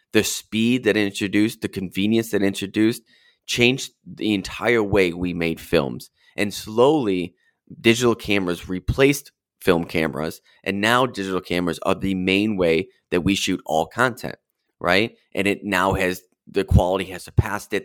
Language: English